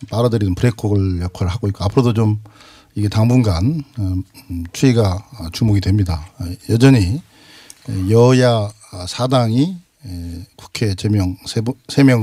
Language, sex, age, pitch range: Korean, male, 50-69, 100-135 Hz